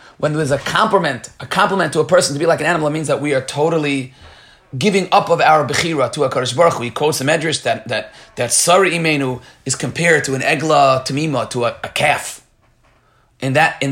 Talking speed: 210 wpm